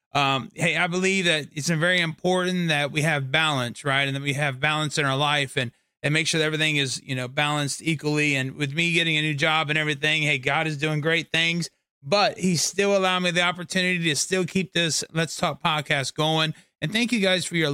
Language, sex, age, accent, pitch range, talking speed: English, male, 30-49, American, 150-185 Hz, 230 wpm